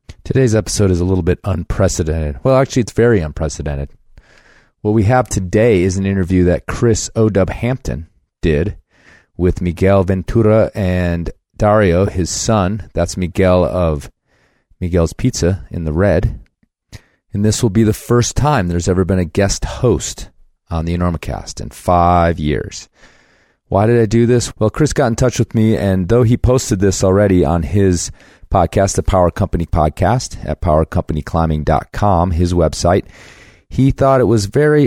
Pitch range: 85-105 Hz